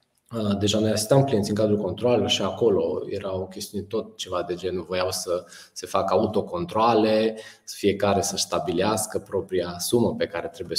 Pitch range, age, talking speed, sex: 100-135 Hz, 20-39, 155 wpm, male